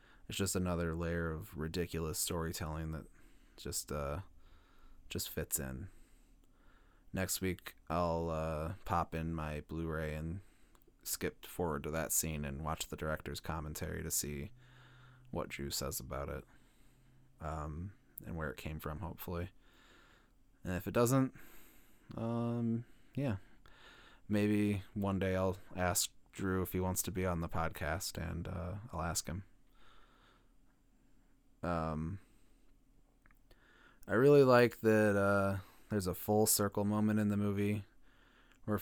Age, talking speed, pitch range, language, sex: 20-39, 135 wpm, 85-100 Hz, English, male